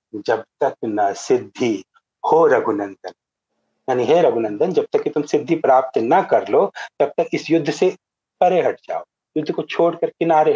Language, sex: Hindi, male